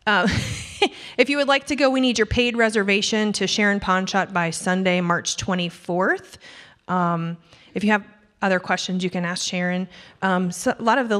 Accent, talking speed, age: American, 180 wpm, 30-49